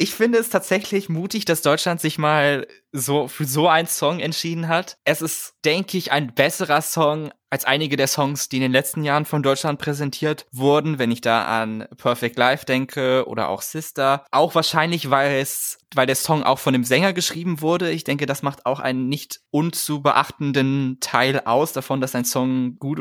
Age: 20-39